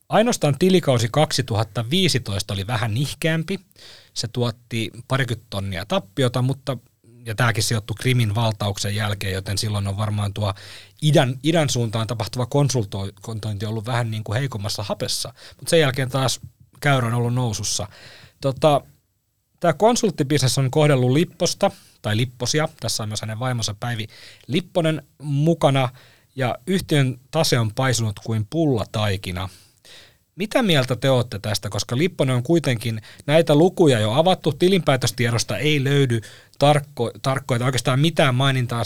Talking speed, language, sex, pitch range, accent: 130 wpm, Finnish, male, 110-150 Hz, native